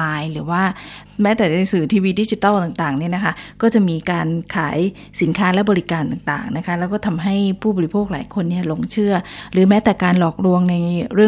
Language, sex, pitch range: Thai, female, 170-215 Hz